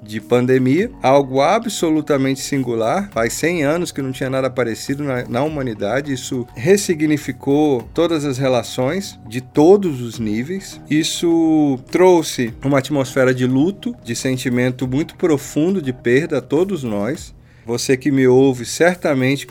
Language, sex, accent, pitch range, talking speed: Portuguese, male, Brazilian, 125-175 Hz, 140 wpm